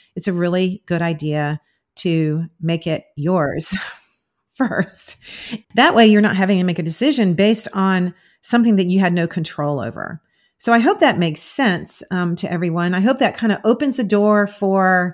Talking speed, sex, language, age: 180 wpm, female, English, 40-59